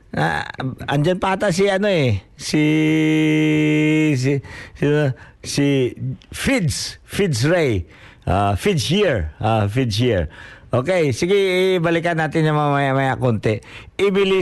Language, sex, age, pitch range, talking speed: Filipino, male, 50-69, 110-160 Hz, 115 wpm